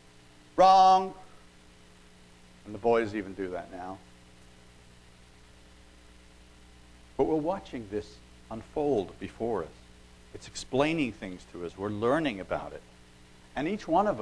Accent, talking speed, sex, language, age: American, 120 wpm, male, English, 60-79